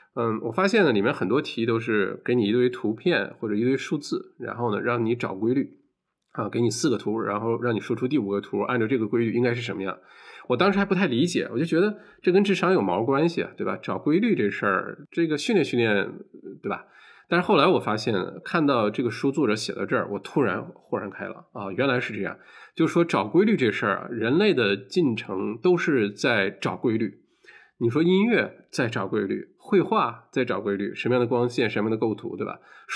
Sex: male